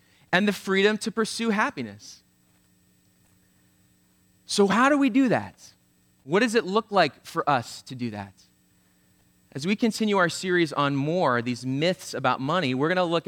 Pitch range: 130-190 Hz